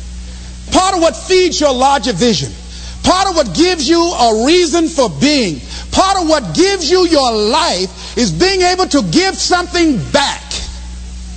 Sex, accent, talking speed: male, American, 160 wpm